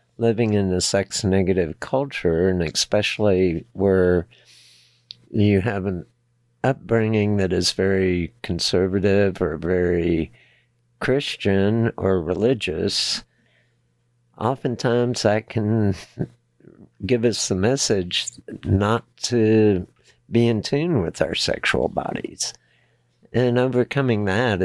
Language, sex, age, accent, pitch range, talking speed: English, male, 50-69, American, 90-115 Hz, 95 wpm